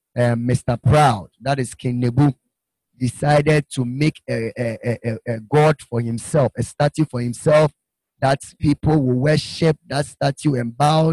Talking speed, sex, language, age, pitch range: 155 wpm, male, English, 30-49, 120-155 Hz